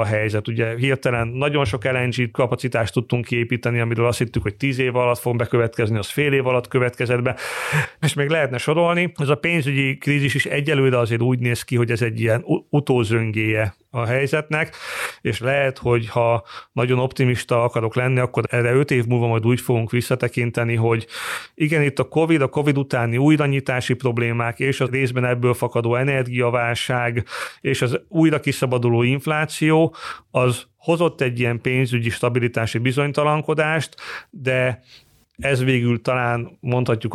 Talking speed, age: 155 wpm, 40-59